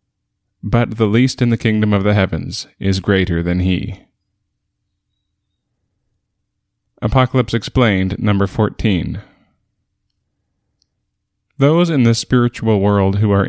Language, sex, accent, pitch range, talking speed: English, male, American, 100-110 Hz, 105 wpm